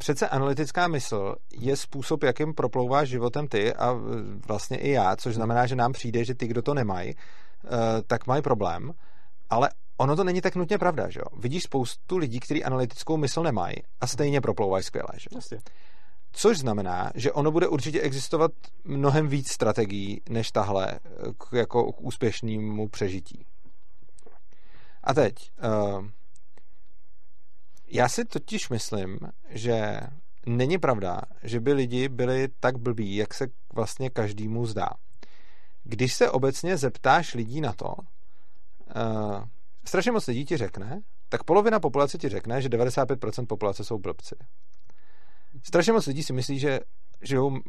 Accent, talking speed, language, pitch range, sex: native, 145 wpm, Czech, 115-145 Hz, male